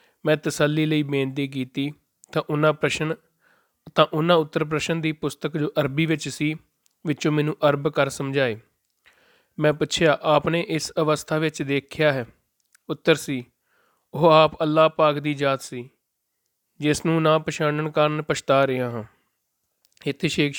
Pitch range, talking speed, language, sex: 135-155 Hz, 145 wpm, Punjabi, male